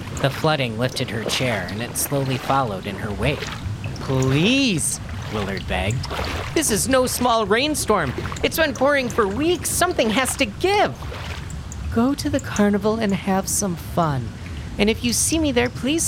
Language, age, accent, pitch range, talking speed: English, 40-59, American, 110-160 Hz, 165 wpm